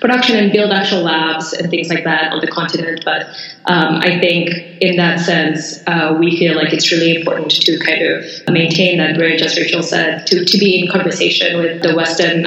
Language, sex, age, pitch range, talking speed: English, female, 20-39, 165-180 Hz, 205 wpm